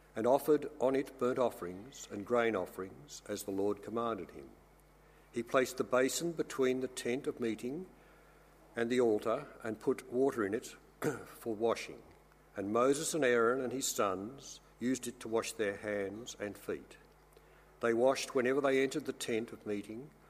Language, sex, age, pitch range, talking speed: English, male, 60-79, 110-140 Hz, 170 wpm